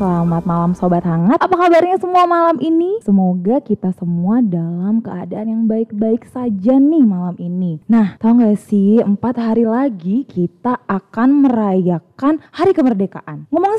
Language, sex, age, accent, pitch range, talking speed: Indonesian, female, 20-39, native, 190-280 Hz, 145 wpm